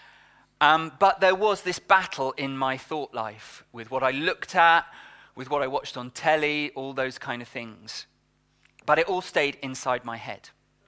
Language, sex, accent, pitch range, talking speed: English, male, British, 125-165 Hz, 180 wpm